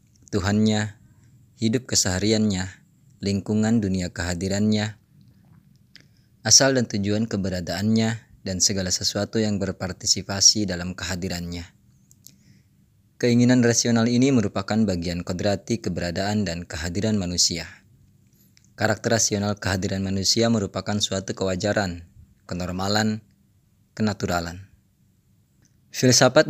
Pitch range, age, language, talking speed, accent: 95-115 Hz, 20-39, Indonesian, 85 wpm, native